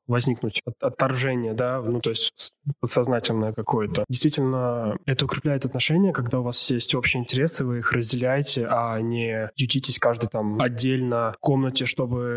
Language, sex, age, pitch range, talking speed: Russian, male, 20-39, 120-140 Hz, 145 wpm